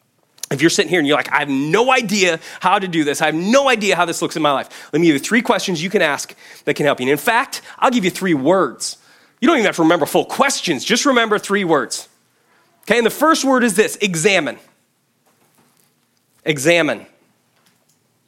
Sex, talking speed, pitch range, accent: male, 220 wpm, 165-240 Hz, American